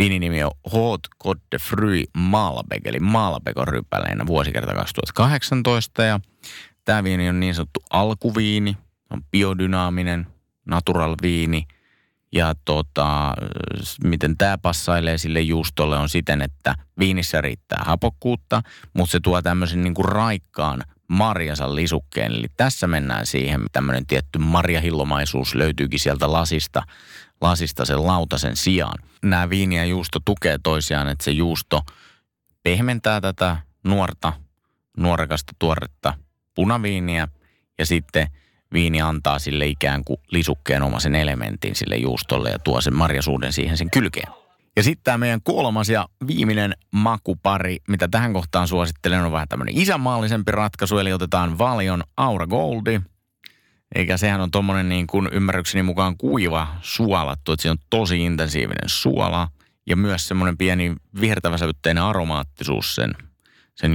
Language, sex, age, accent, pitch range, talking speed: Finnish, male, 30-49, native, 75-95 Hz, 130 wpm